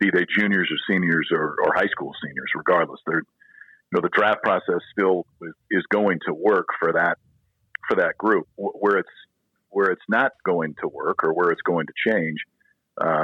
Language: English